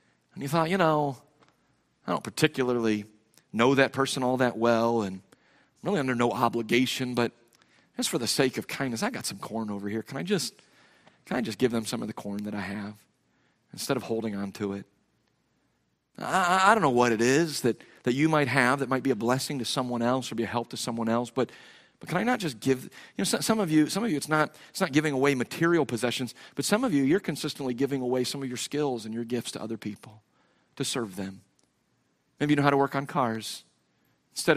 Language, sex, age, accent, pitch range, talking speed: English, male, 40-59, American, 115-150 Hz, 235 wpm